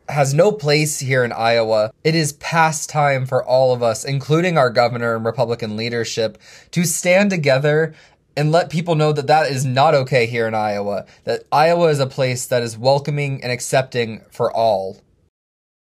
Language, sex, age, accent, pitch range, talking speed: English, male, 20-39, American, 130-160 Hz, 180 wpm